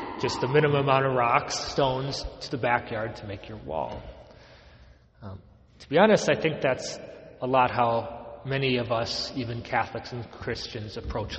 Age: 30-49